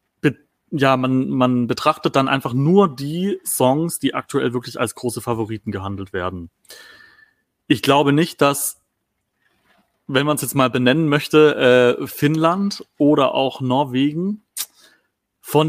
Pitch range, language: 115-145 Hz, German